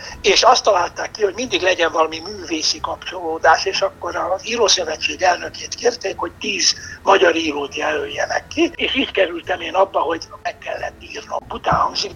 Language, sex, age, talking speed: Hungarian, male, 60-79, 160 wpm